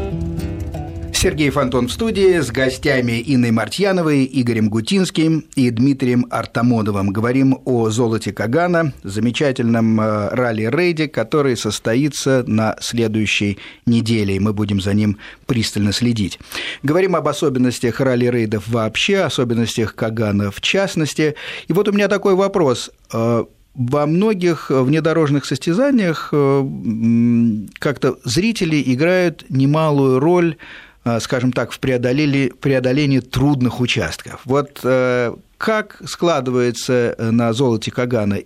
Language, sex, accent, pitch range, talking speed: Russian, male, native, 110-150 Hz, 105 wpm